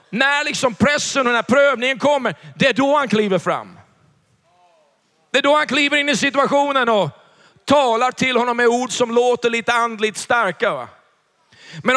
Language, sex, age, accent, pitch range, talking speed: Swedish, male, 40-59, native, 205-250 Hz, 170 wpm